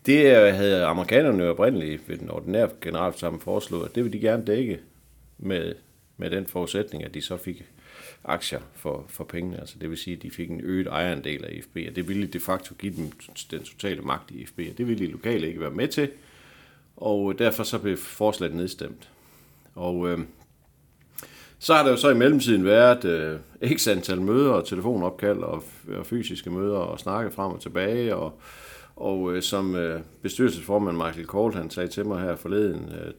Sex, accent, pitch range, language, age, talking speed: male, native, 85-105 Hz, Danish, 60-79, 190 wpm